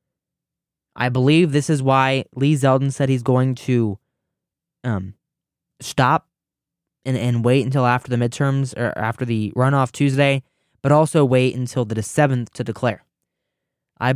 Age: 10-29